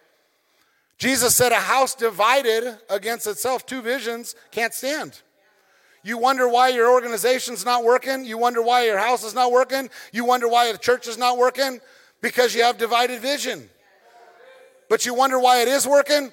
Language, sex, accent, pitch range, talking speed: English, male, American, 200-250 Hz, 170 wpm